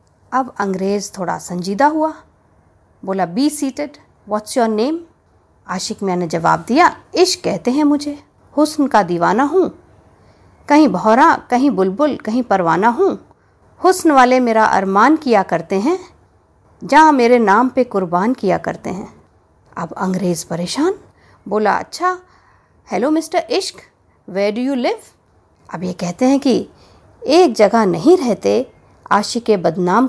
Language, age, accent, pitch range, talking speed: Hindi, 50-69, native, 200-300 Hz, 135 wpm